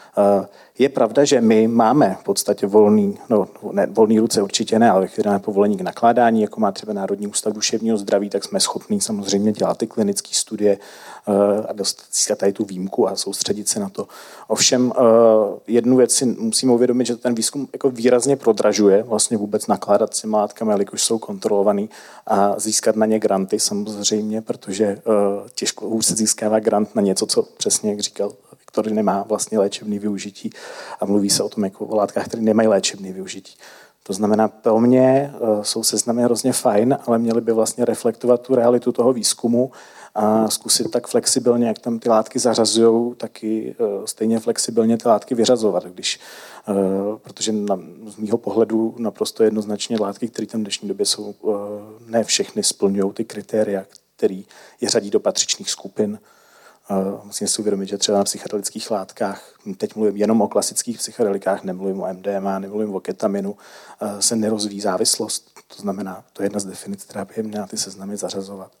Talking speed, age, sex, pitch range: 170 wpm, 40-59, male, 100-115 Hz